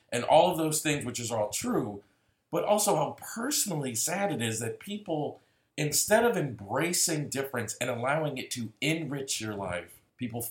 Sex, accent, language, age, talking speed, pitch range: male, American, English, 40-59, 170 wpm, 105-145 Hz